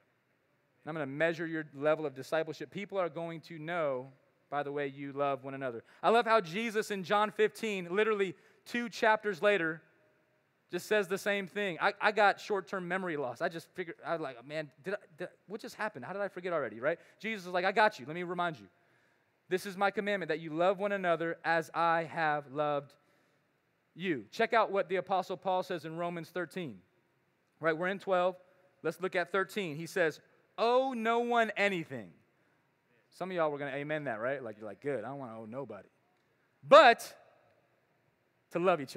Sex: male